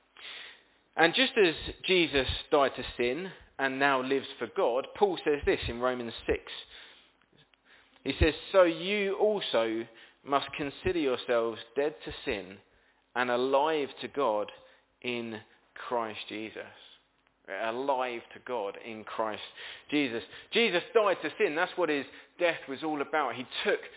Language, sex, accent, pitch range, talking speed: English, male, British, 120-185 Hz, 140 wpm